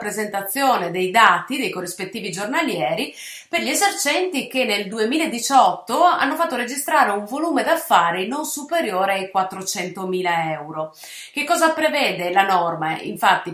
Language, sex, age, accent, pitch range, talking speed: Italian, female, 30-49, native, 200-310 Hz, 130 wpm